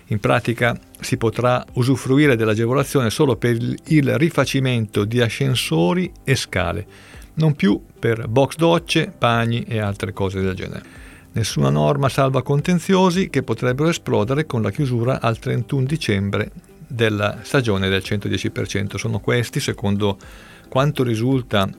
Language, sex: Italian, male